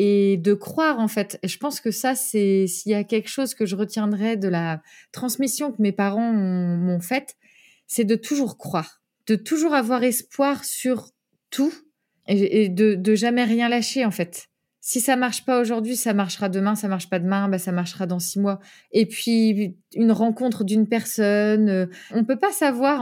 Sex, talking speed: female, 190 wpm